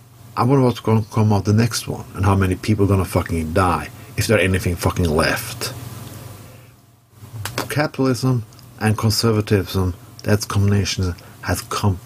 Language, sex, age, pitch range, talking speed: English, male, 50-69, 100-120 Hz, 140 wpm